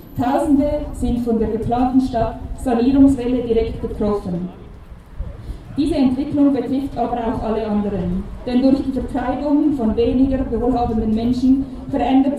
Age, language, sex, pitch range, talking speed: 20-39, German, female, 225-265 Hz, 120 wpm